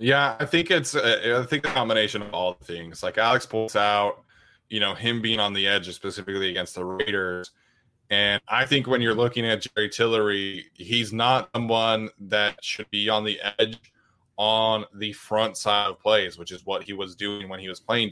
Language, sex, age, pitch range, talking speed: English, male, 20-39, 100-115 Hz, 200 wpm